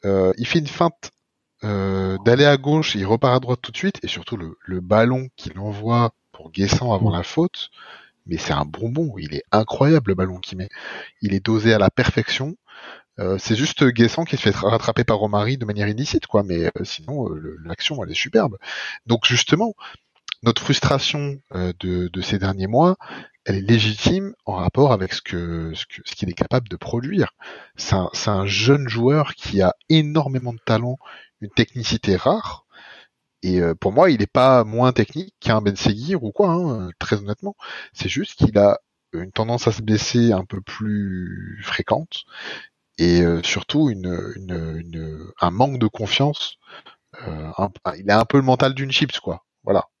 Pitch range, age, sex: 95-130 Hz, 30-49, male